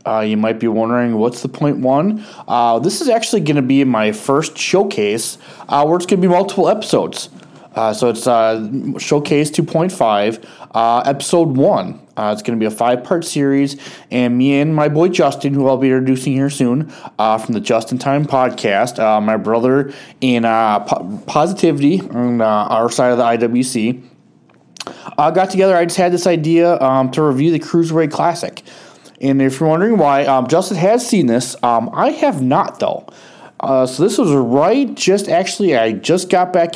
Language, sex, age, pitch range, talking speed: English, male, 20-39, 115-160 Hz, 190 wpm